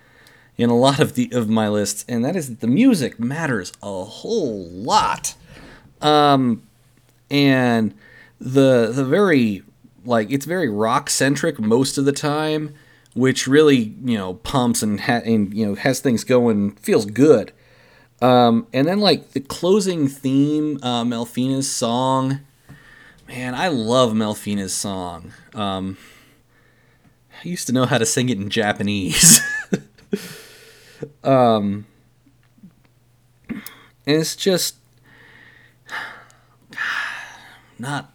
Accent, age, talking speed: American, 30-49, 125 wpm